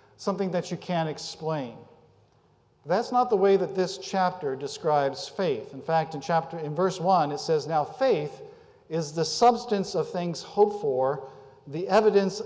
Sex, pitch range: male, 155-210 Hz